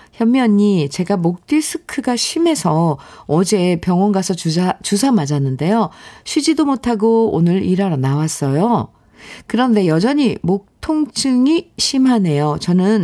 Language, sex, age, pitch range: Korean, female, 50-69, 145-215 Hz